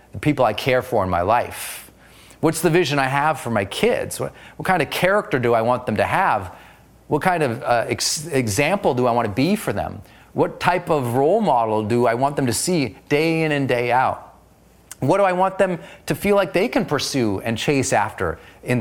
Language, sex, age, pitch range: English, male, 30-49, 135-195 Hz